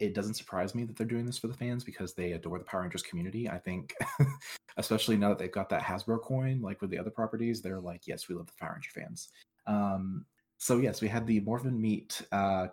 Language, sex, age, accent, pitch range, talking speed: English, male, 20-39, American, 95-115 Hz, 240 wpm